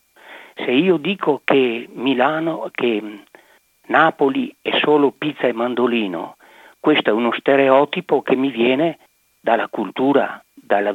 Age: 50-69